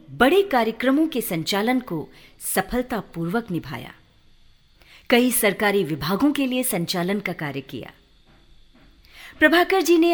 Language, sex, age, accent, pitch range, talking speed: Hindi, female, 50-69, native, 185-270 Hz, 110 wpm